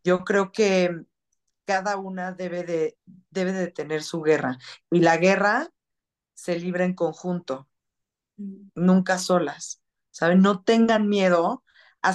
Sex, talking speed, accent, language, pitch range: female, 120 wpm, Mexican, Spanish, 170-190 Hz